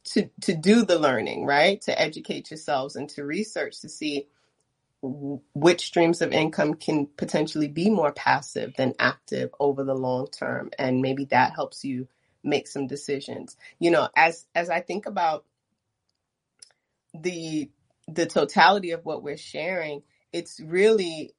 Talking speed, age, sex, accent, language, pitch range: 150 wpm, 30-49, female, American, English, 140-195 Hz